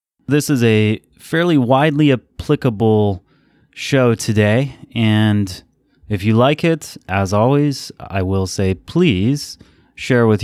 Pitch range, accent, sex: 100-125 Hz, American, male